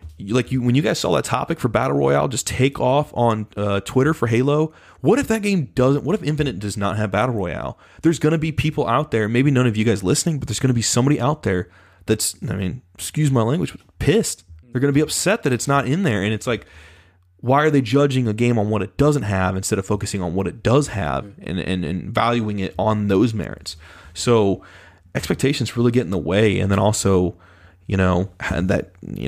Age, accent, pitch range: 20-39, American, 90-120 Hz